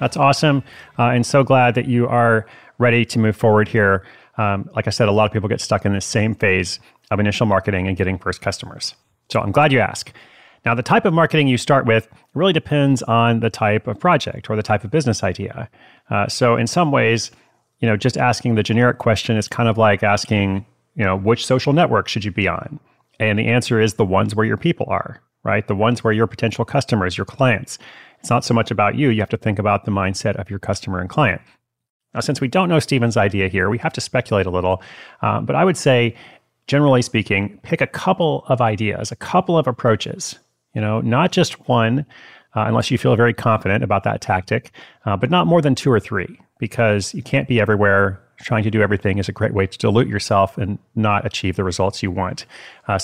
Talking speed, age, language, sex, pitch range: 225 wpm, 30-49, English, male, 105-125 Hz